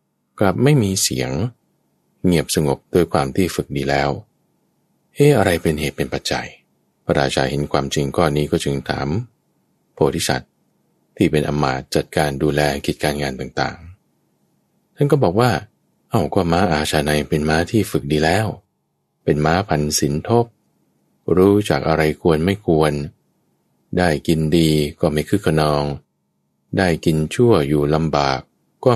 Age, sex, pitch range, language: 20-39, male, 75-100 Hz, English